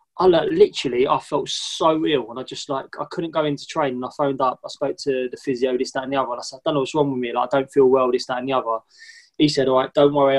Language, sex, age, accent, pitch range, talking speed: English, male, 20-39, British, 125-145 Hz, 310 wpm